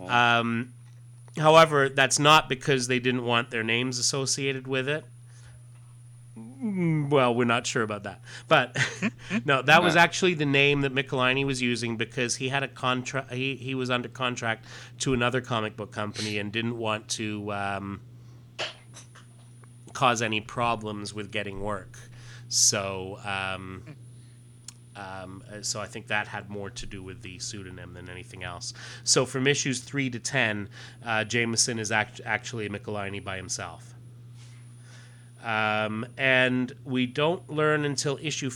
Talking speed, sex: 150 wpm, male